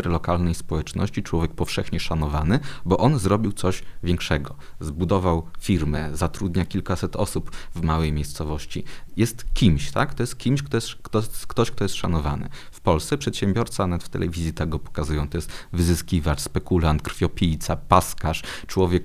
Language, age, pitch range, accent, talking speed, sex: Polish, 30-49, 80-110 Hz, native, 140 wpm, male